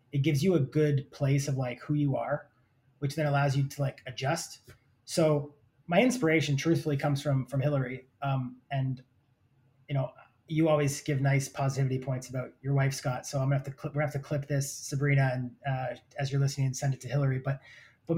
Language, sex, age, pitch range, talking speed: English, male, 30-49, 135-150 Hz, 215 wpm